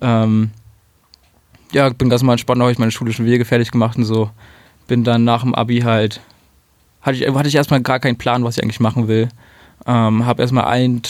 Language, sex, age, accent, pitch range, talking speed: German, male, 20-39, German, 110-125 Hz, 210 wpm